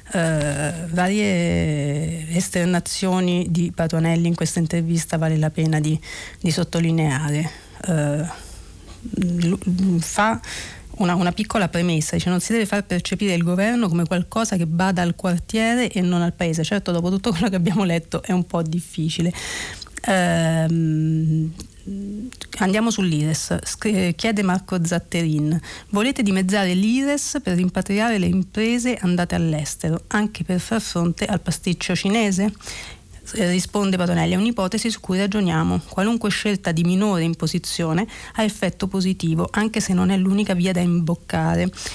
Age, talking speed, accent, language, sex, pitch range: 40-59, 130 wpm, native, Italian, female, 170-210 Hz